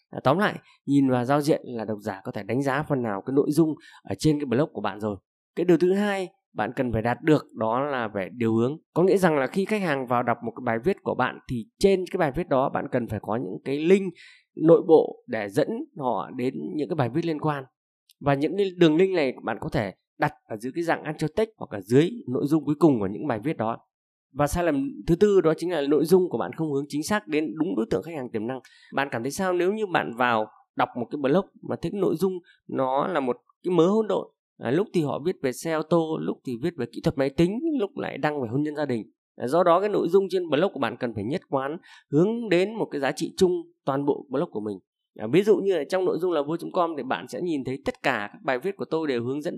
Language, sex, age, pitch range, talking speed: Vietnamese, male, 20-39, 125-185 Hz, 280 wpm